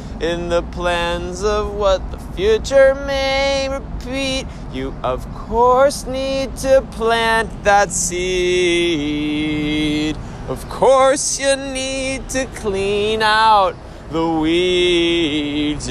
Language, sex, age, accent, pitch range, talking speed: English, male, 20-39, American, 150-220 Hz, 100 wpm